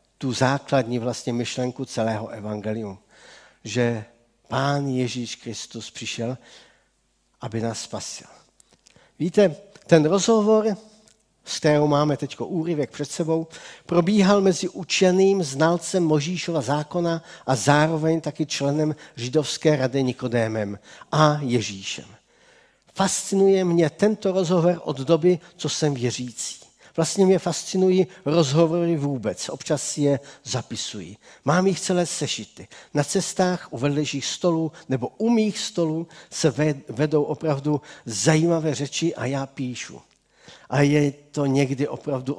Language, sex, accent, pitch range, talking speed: Czech, male, native, 125-170 Hz, 115 wpm